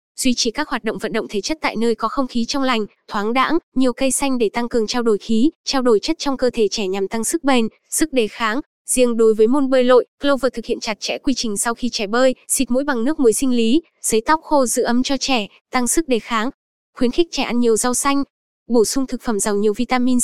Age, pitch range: 10-29, 225-270 Hz